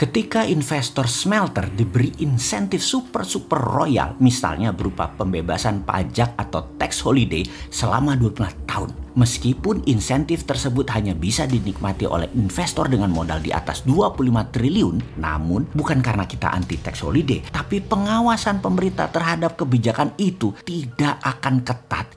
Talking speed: 125 wpm